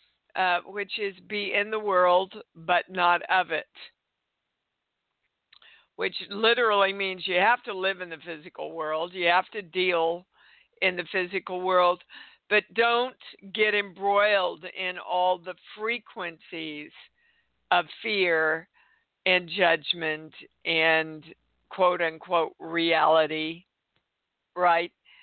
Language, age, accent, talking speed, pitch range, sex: English, 50-69, American, 110 wpm, 165-200 Hz, female